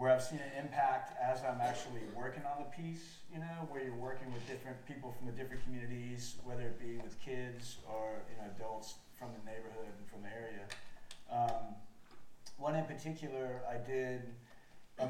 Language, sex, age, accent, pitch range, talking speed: English, male, 40-59, American, 115-145 Hz, 185 wpm